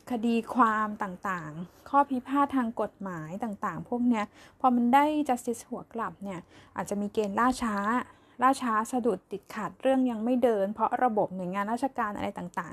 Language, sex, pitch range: Thai, female, 200-250 Hz